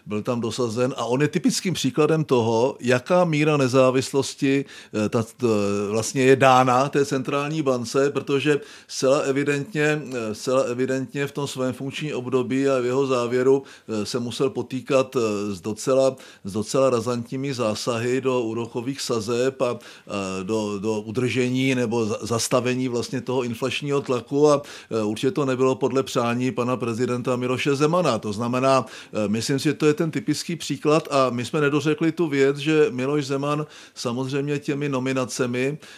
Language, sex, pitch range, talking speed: Czech, male, 115-135 Hz, 145 wpm